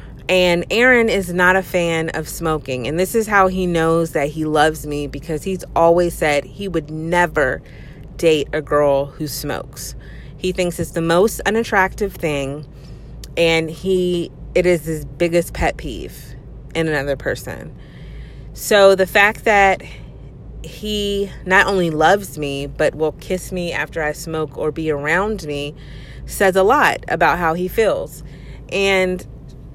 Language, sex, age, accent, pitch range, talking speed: English, female, 30-49, American, 145-195 Hz, 155 wpm